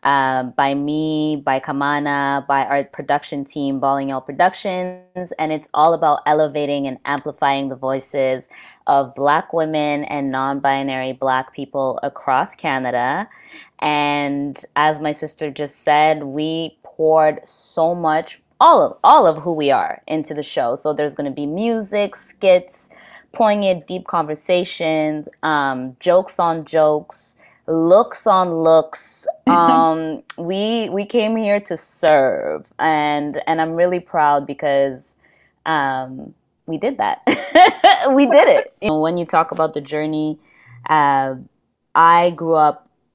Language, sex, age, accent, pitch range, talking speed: English, female, 20-39, American, 145-165 Hz, 135 wpm